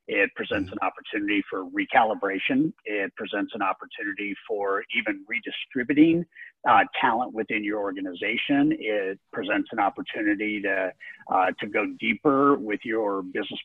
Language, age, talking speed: English, 50-69, 125 wpm